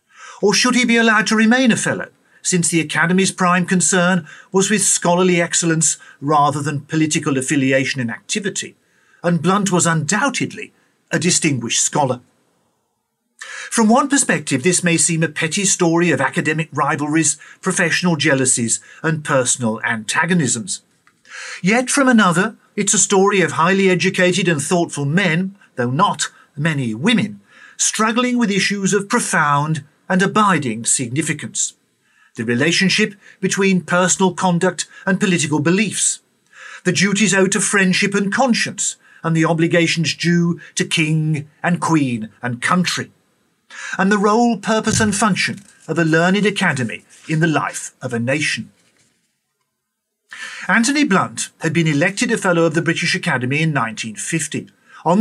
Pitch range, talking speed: 155-195 Hz, 140 wpm